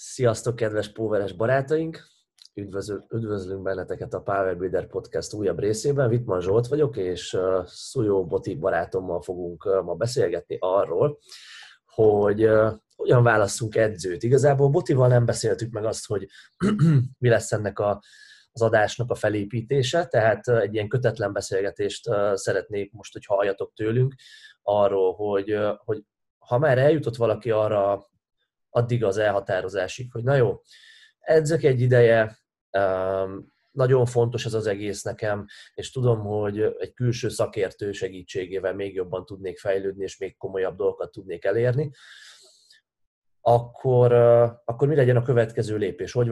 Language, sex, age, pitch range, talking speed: Hungarian, male, 20-39, 100-125 Hz, 130 wpm